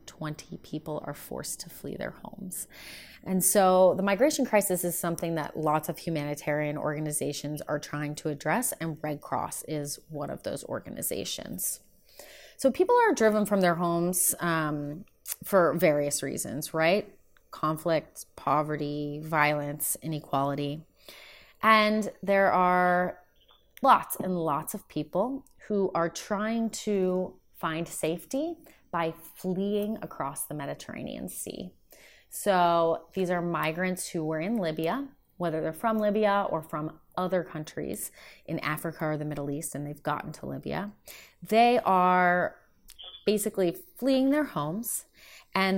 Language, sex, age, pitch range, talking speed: English, female, 30-49, 155-200 Hz, 135 wpm